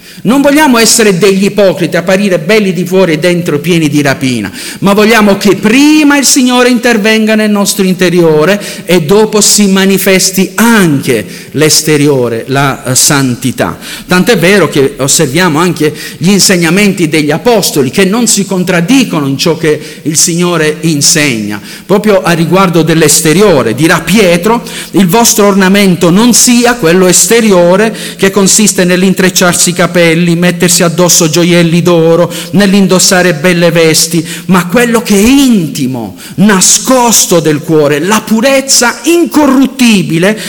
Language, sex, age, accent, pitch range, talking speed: Italian, male, 50-69, native, 160-215 Hz, 130 wpm